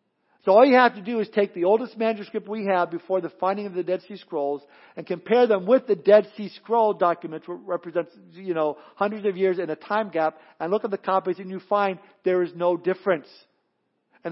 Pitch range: 180-215 Hz